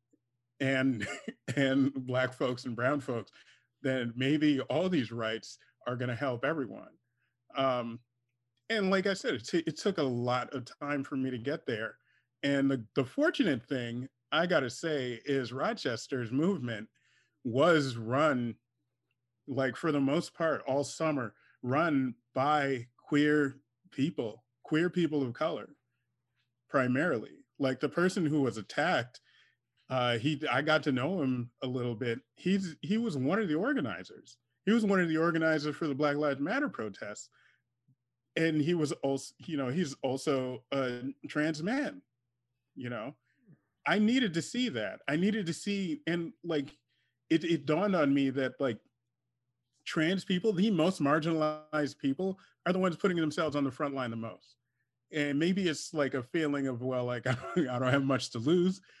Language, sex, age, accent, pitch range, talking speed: English, male, 30-49, American, 125-160 Hz, 165 wpm